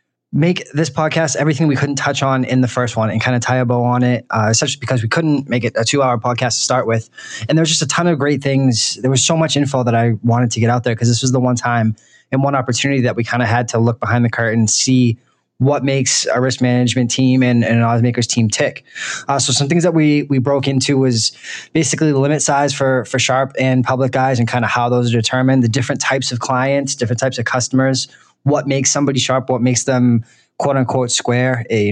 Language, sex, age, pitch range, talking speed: English, male, 20-39, 120-140 Hz, 250 wpm